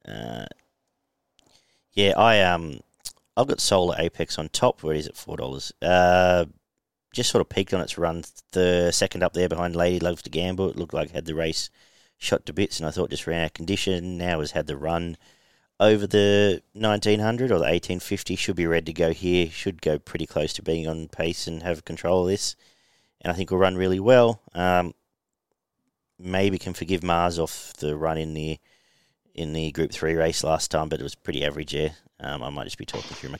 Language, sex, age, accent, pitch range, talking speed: English, male, 40-59, Australian, 80-100 Hz, 220 wpm